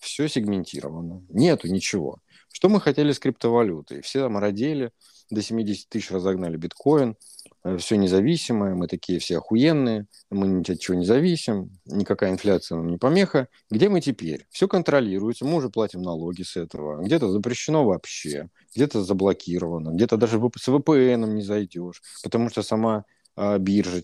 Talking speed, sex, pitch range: 150 wpm, male, 90-130 Hz